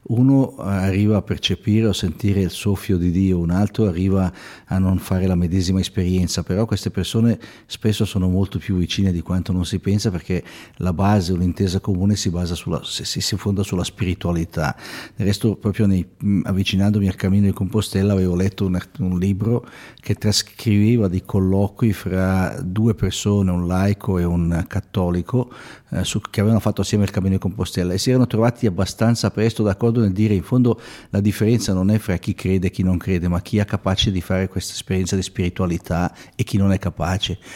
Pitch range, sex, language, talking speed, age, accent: 95-110 Hz, male, Italian, 190 wpm, 50-69, native